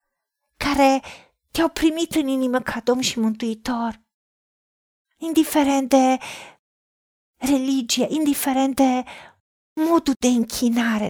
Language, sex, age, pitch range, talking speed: Romanian, female, 40-59, 235-285 Hz, 90 wpm